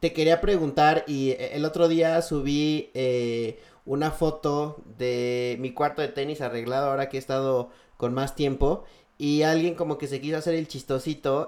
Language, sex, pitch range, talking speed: Spanish, male, 130-160 Hz, 175 wpm